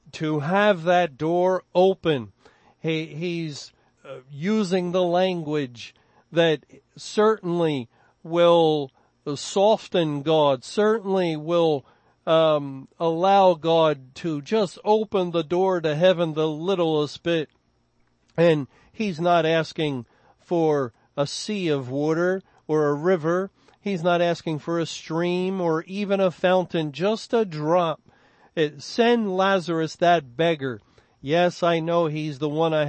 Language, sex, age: English, male, 50-69